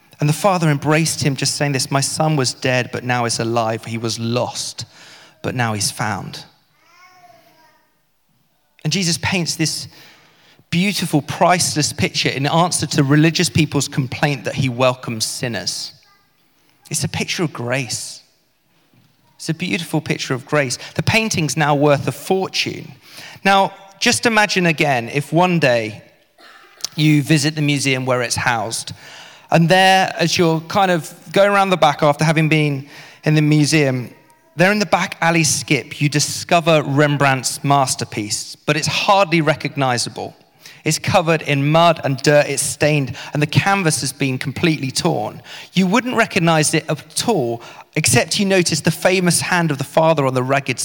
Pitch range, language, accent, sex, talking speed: 135-170 Hz, English, British, male, 160 wpm